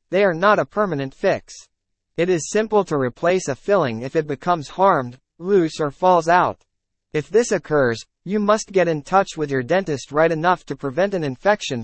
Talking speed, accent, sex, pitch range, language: 195 wpm, American, male, 130-185 Hz, English